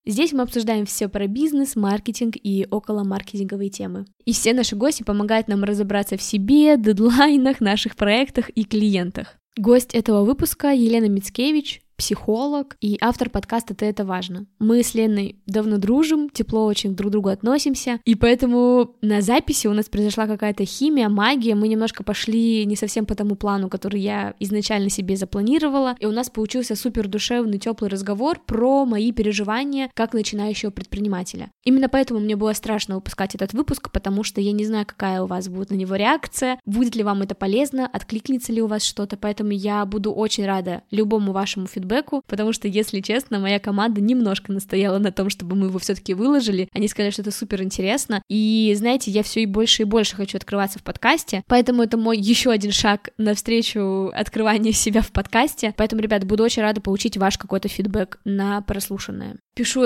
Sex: female